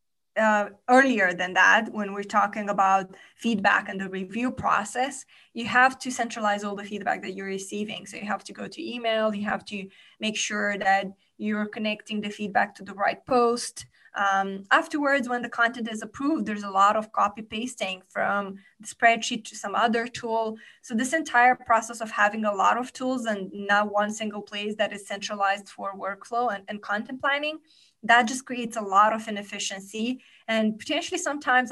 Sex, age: female, 20-39